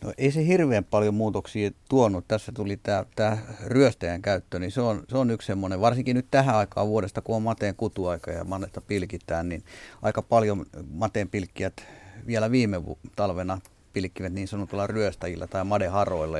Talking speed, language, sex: 165 wpm, Finnish, male